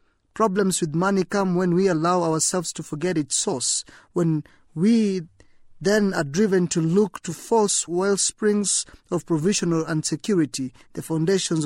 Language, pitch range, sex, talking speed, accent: English, 155-195 Hz, male, 145 wpm, South African